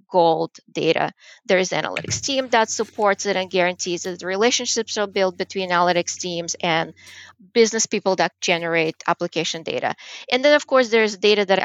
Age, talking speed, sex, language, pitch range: 20-39, 170 wpm, female, English, 185-235 Hz